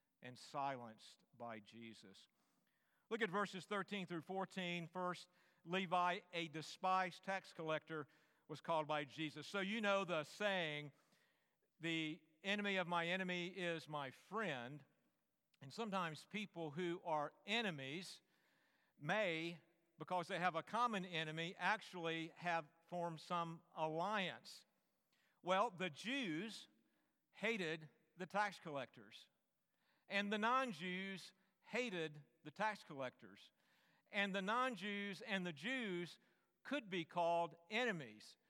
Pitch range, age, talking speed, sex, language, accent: 160-200 Hz, 50-69, 115 wpm, male, English, American